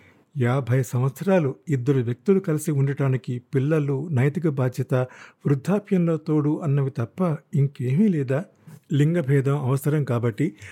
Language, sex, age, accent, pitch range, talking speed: Telugu, male, 50-69, native, 135-180 Hz, 100 wpm